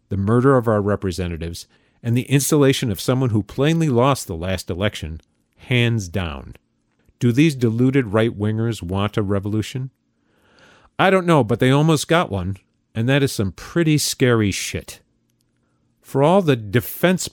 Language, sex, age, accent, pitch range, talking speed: English, male, 40-59, American, 95-120 Hz, 150 wpm